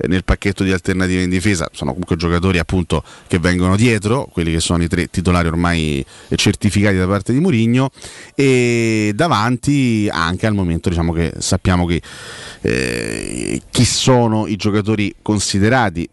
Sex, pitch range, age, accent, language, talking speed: male, 85-105 Hz, 30-49, native, Italian, 150 wpm